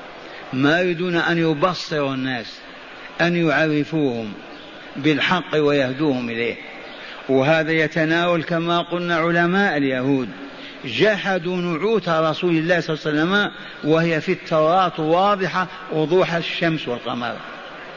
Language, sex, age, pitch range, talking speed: Arabic, male, 50-69, 145-180 Hz, 105 wpm